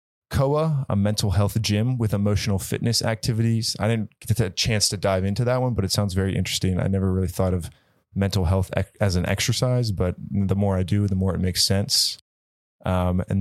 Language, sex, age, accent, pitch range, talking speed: English, male, 20-39, American, 95-115 Hz, 205 wpm